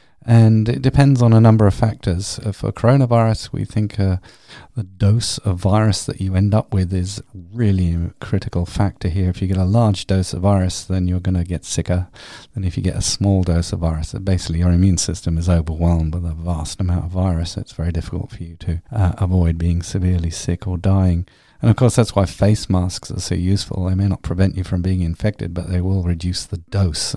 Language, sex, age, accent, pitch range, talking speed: English, male, 40-59, British, 85-100 Hz, 225 wpm